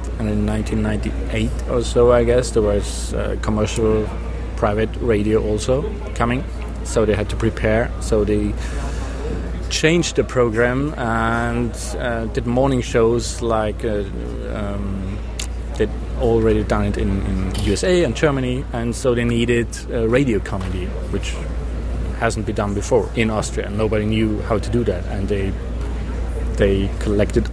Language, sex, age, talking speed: English, male, 30-49, 145 wpm